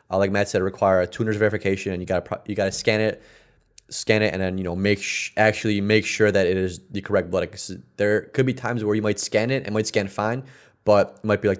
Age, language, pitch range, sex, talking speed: 20-39, English, 95-110 Hz, male, 275 wpm